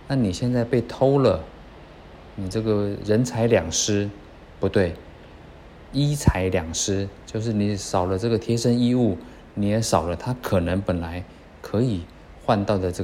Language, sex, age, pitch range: Chinese, male, 20-39, 90-115 Hz